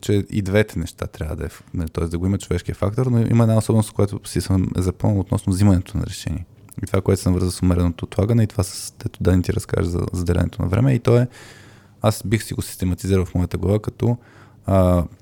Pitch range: 90-115 Hz